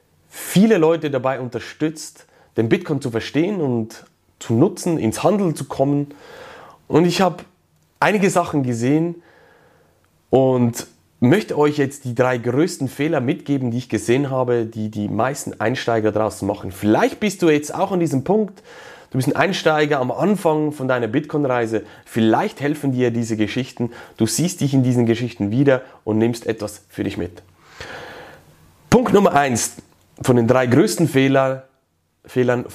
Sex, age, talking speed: male, 30-49, 150 wpm